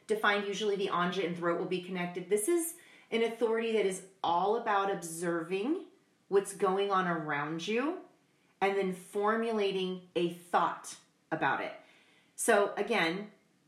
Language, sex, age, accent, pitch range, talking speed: English, female, 30-49, American, 170-210 Hz, 140 wpm